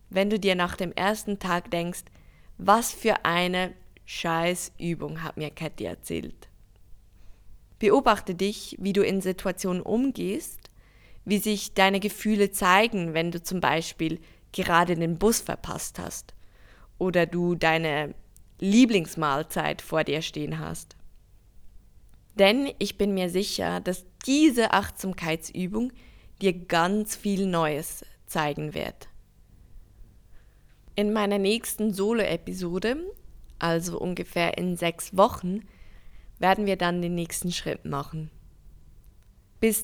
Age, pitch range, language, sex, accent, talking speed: 20-39, 155-200 Hz, English, female, German, 115 wpm